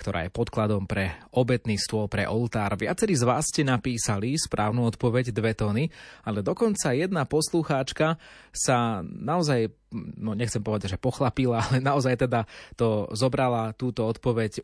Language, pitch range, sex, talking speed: Slovak, 105-130 Hz, male, 145 wpm